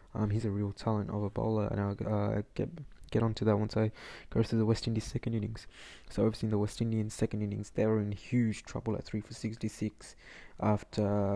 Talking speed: 225 wpm